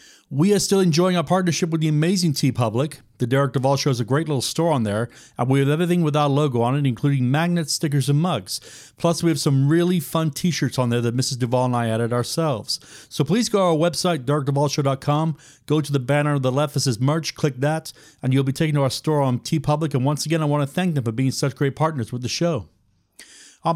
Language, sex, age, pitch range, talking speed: English, male, 40-59, 125-155 Hz, 250 wpm